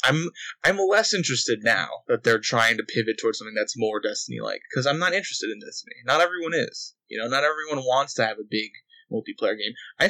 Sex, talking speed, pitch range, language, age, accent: male, 215 wpm, 120-190 Hz, English, 20-39, American